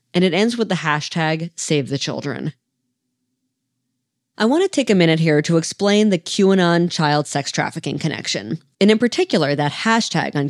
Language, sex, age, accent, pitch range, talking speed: English, female, 20-39, American, 140-190 Hz, 170 wpm